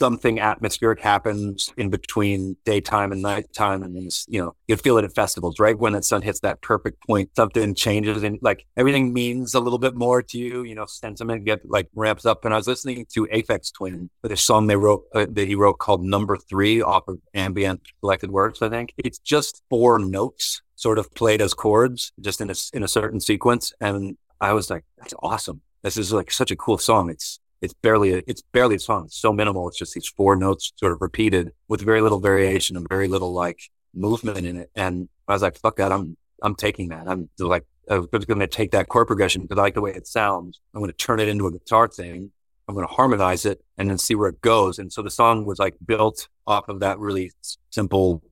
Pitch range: 95-110 Hz